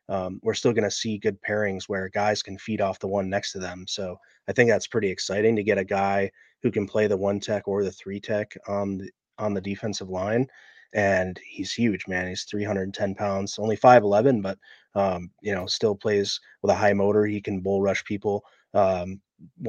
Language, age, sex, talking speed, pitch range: English, 30-49, male, 205 wpm, 95-105 Hz